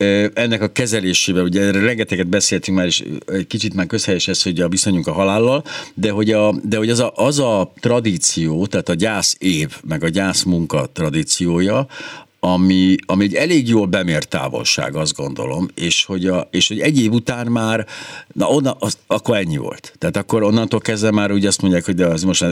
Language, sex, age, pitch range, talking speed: Hungarian, male, 60-79, 90-115 Hz, 195 wpm